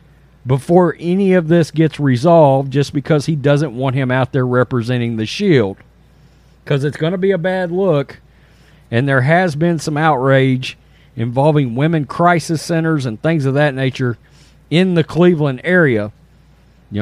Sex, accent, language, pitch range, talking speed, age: male, American, English, 120-160 Hz, 160 wpm, 40-59